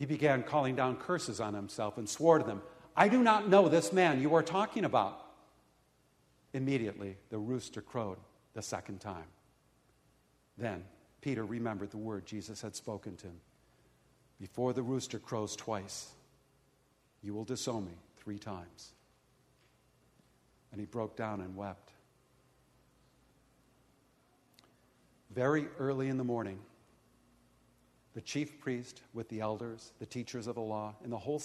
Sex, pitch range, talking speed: male, 105-135 Hz, 140 wpm